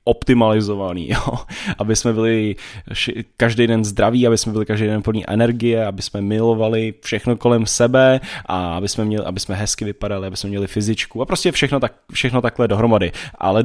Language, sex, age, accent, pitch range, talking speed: Czech, male, 10-29, native, 105-125 Hz, 180 wpm